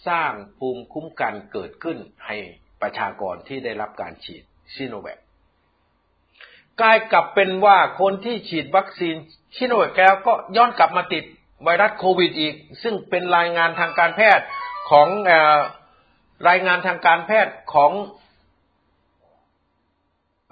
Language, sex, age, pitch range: Thai, male, 60-79, 130-220 Hz